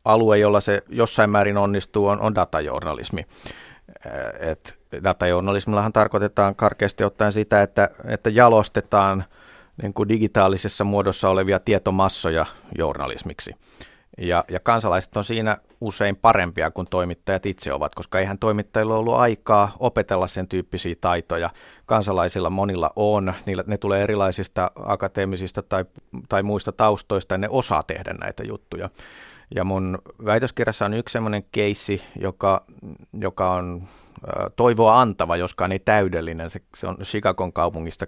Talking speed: 130 wpm